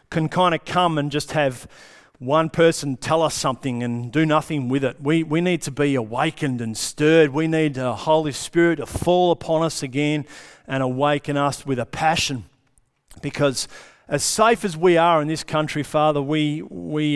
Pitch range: 125-150 Hz